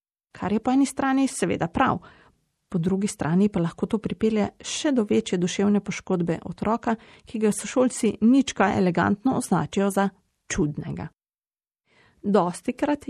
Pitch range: 180-240 Hz